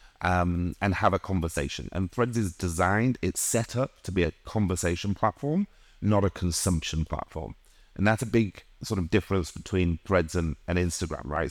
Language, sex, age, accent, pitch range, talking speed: English, male, 30-49, British, 85-105 Hz, 175 wpm